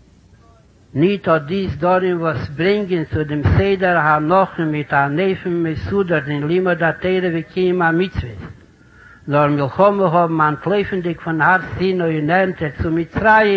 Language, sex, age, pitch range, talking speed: Hebrew, male, 60-79, 155-195 Hz, 165 wpm